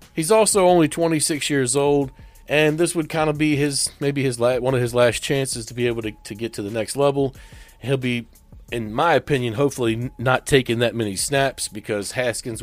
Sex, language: male, English